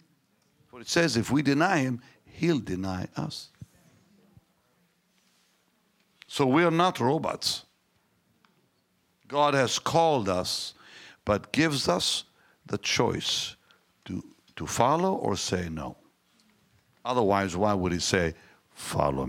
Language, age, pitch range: English, 60-79, 95-145 Hz